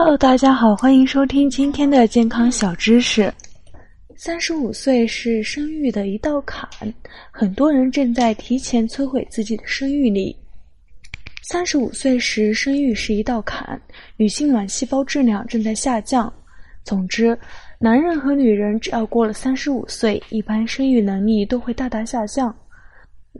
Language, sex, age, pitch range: Chinese, female, 20-39, 210-260 Hz